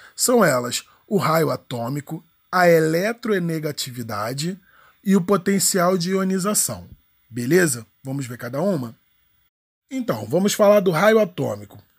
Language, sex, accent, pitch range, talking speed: Portuguese, male, Brazilian, 135-205 Hz, 115 wpm